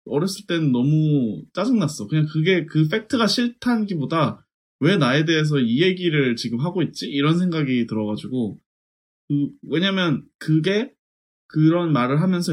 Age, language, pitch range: 20-39, Korean, 125-180 Hz